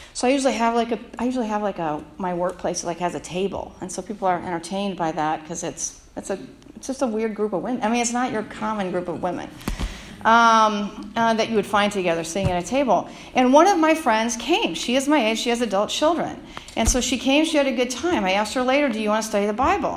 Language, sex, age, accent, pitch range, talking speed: English, female, 40-59, American, 215-280 Hz, 260 wpm